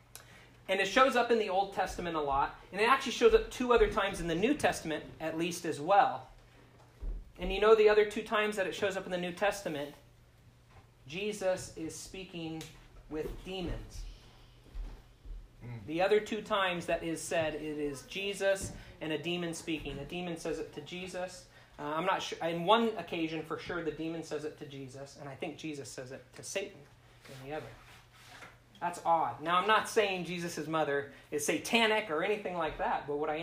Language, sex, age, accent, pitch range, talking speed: English, male, 30-49, American, 140-195 Hz, 195 wpm